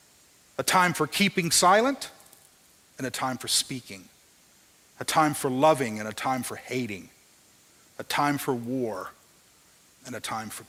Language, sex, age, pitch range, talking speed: English, male, 40-59, 150-200 Hz, 150 wpm